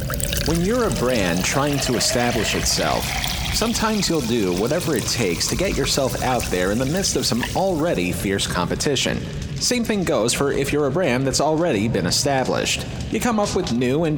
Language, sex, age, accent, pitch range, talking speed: English, male, 30-49, American, 115-160 Hz, 190 wpm